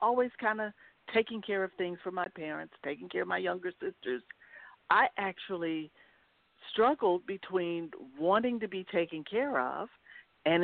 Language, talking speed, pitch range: English, 150 wpm, 170-245 Hz